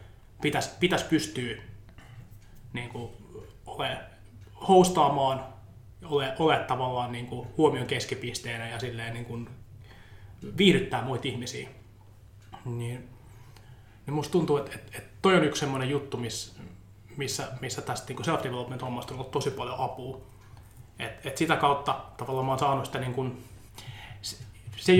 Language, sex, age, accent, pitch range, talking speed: Finnish, male, 20-39, native, 110-140 Hz, 125 wpm